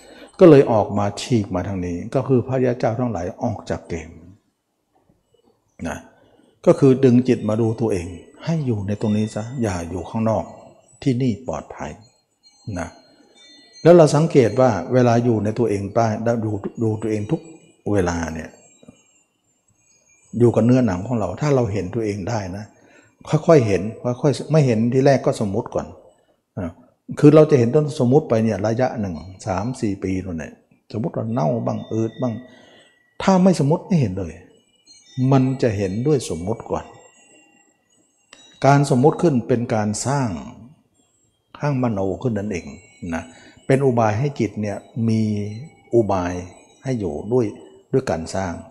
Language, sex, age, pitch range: Thai, male, 60-79, 100-130 Hz